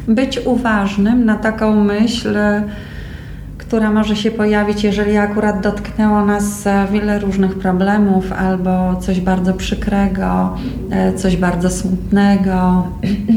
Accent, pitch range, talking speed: native, 180-205 Hz, 105 wpm